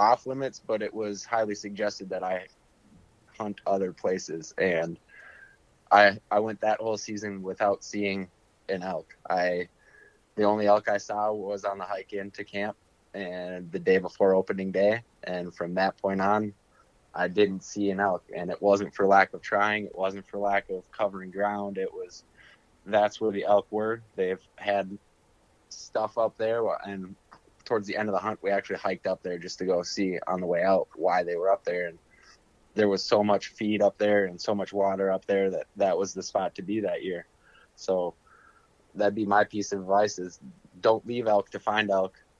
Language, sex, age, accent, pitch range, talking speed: English, male, 20-39, American, 95-105 Hz, 195 wpm